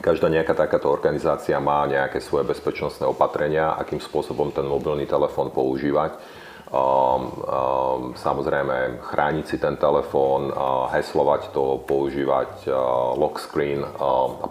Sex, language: male, Slovak